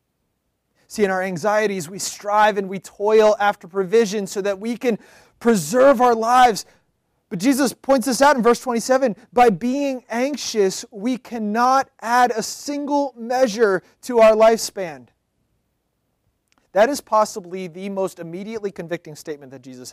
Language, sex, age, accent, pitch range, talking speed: English, male, 30-49, American, 145-220 Hz, 145 wpm